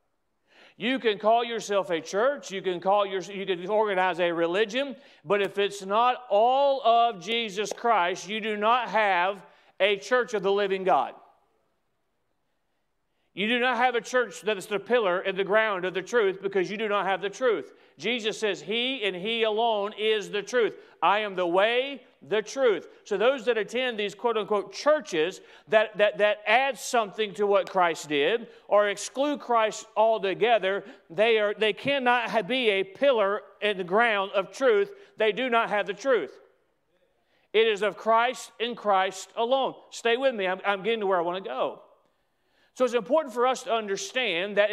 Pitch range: 200-245 Hz